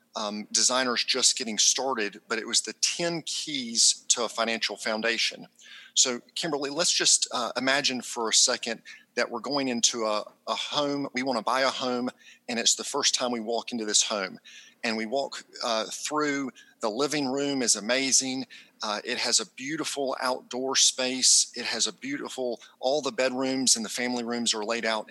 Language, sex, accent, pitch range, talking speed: English, male, American, 115-140 Hz, 185 wpm